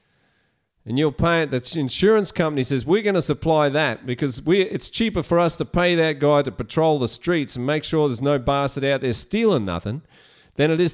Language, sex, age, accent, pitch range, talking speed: English, male, 40-59, Australian, 140-190 Hz, 215 wpm